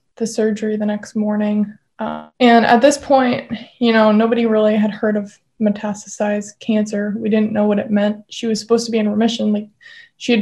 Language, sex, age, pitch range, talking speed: English, female, 20-39, 210-230 Hz, 200 wpm